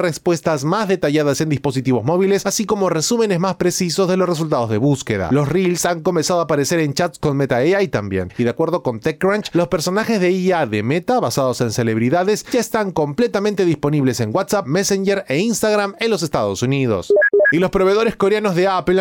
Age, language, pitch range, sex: 30-49, Spanish, 145-200 Hz, male